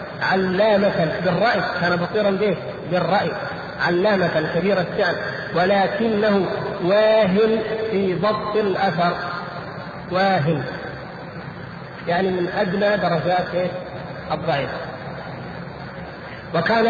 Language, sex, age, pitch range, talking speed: Arabic, male, 50-69, 170-200 Hz, 75 wpm